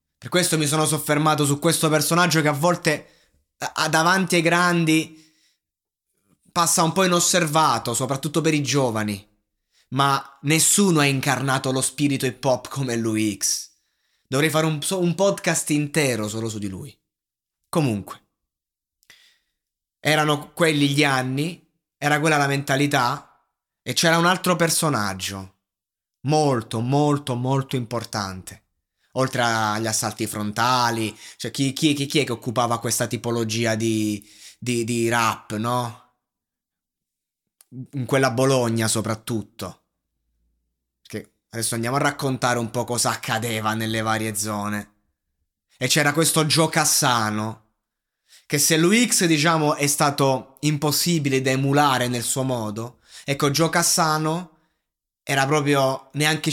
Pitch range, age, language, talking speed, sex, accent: 110-155 Hz, 20-39, Italian, 125 wpm, male, native